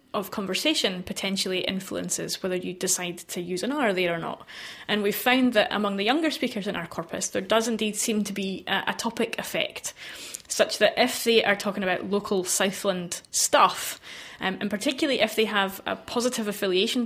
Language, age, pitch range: English, 20-39, 185-225 Hz